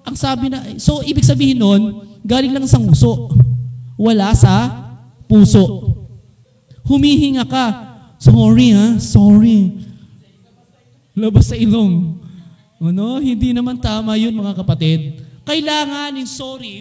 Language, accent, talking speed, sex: Filipino, native, 115 wpm, male